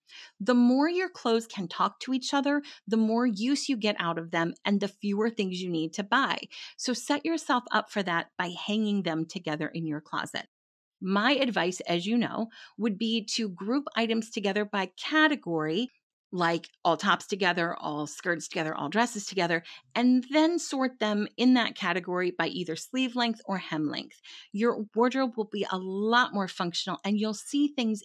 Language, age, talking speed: English, 30-49, 185 wpm